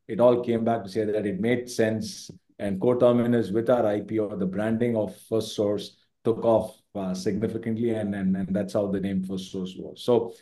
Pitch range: 95-110 Hz